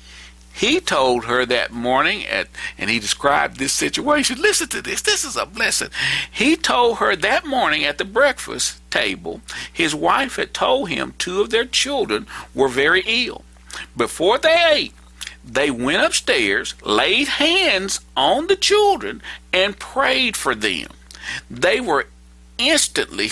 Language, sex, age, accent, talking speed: English, male, 50-69, American, 145 wpm